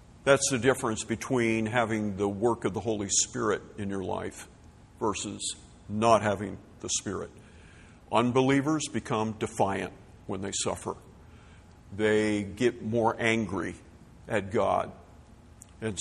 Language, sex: English, male